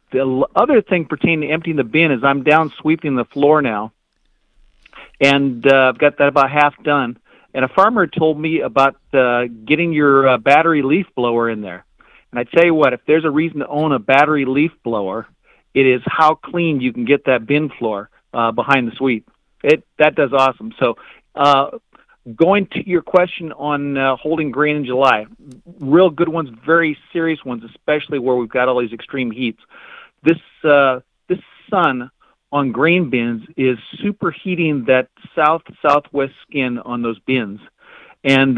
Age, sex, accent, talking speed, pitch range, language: 50-69, male, American, 175 wpm, 125-155 Hz, English